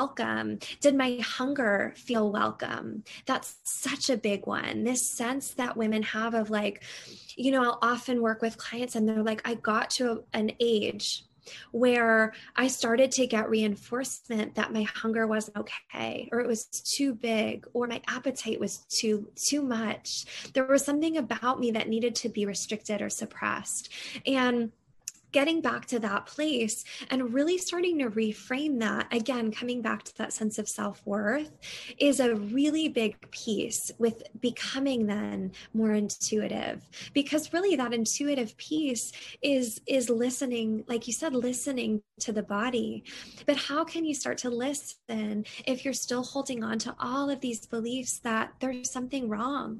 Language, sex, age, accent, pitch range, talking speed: English, female, 10-29, American, 220-265 Hz, 165 wpm